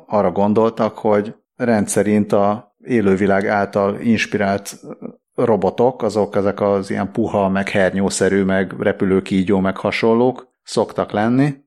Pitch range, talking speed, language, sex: 95-120 Hz, 115 wpm, Hungarian, male